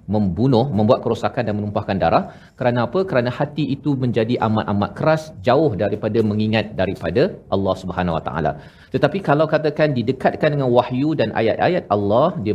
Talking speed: 155 wpm